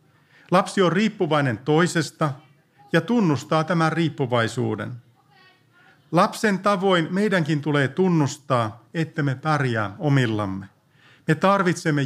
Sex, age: male, 50-69